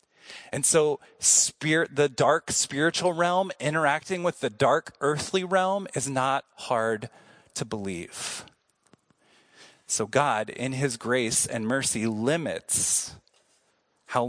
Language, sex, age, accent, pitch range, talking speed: English, male, 30-49, American, 130-175 Hz, 115 wpm